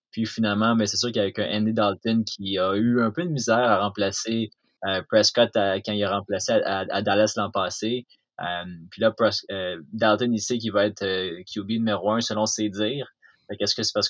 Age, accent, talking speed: 20-39, Canadian, 230 wpm